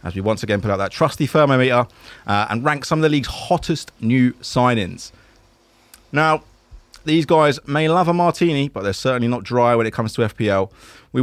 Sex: male